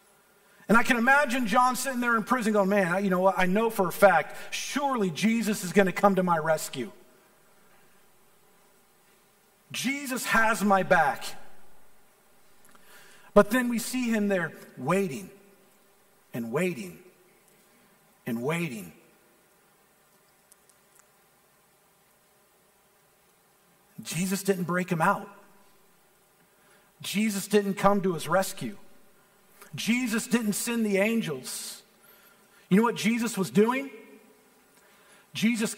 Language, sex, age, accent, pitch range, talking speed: English, male, 50-69, American, 195-200 Hz, 110 wpm